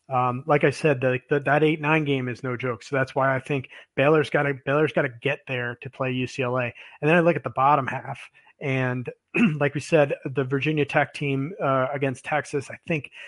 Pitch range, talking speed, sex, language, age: 125-145 Hz, 225 wpm, male, English, 30-49